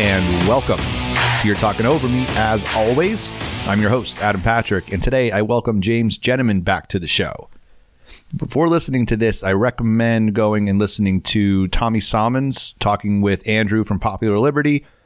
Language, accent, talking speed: English, American, 165 wpm